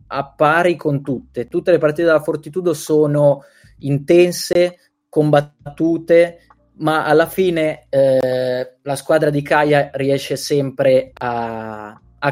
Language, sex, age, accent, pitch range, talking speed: Italian, male, 20-39, native, 125-155 Hz, 115 wpm